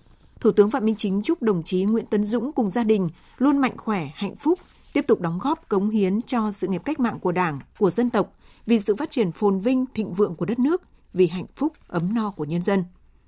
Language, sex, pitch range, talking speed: Vietnamese, female, 185-235 Hz, 245 wpm